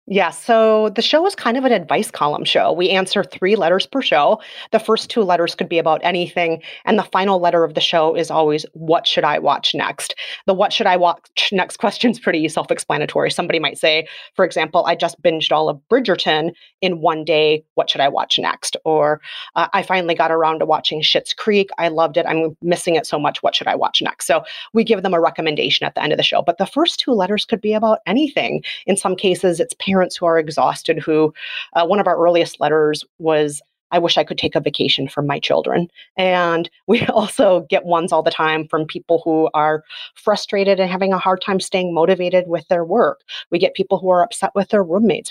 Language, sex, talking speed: English, female, 225 wpm